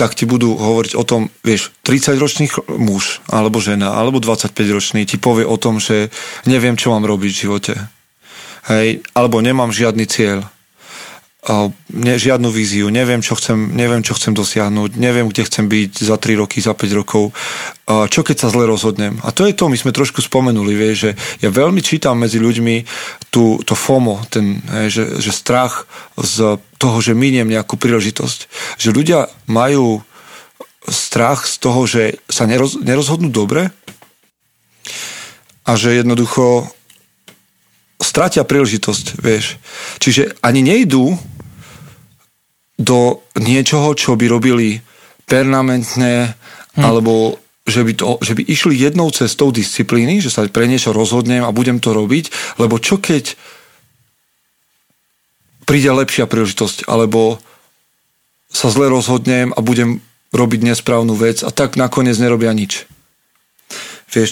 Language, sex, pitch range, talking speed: Slovak, male, 110-130 Hz, 135 wpm